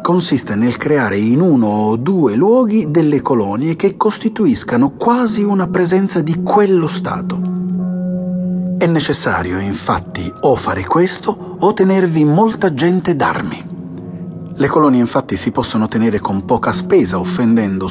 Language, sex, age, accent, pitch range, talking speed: Italian, male, 40-59, native, 110-180 Hz, 130 wpm